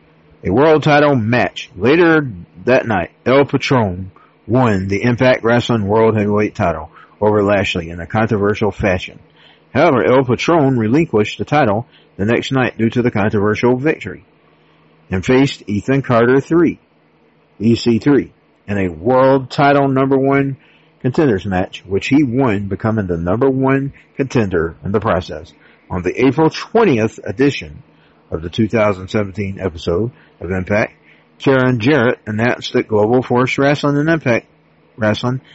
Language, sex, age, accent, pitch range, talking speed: English, male, 50-69, American, 105-130 Hz, 140 wpm